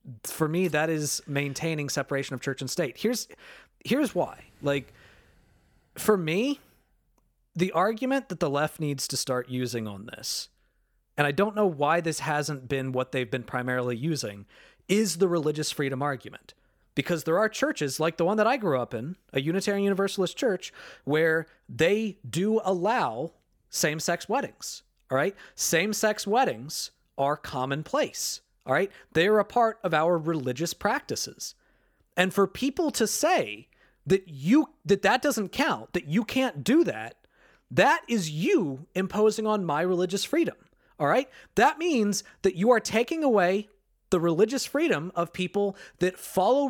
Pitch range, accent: 145-215 Hz, American